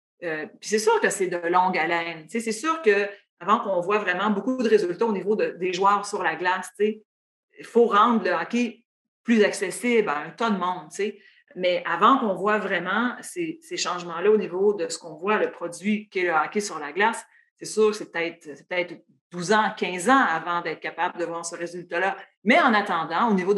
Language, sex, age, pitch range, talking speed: French, female, 40-59, 175-220 Hz, 215 wpm